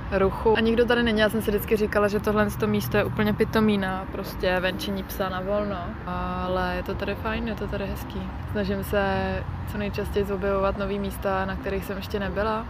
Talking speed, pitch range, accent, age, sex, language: 205 wpm, 185-205 Hz, native, 20-39, female, Czech